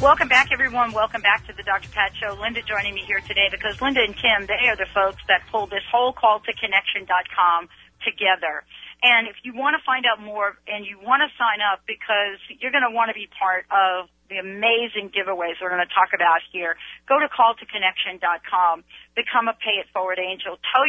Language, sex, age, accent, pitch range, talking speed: English, female, 40-59, American, 180-230 Hz, 205 wpm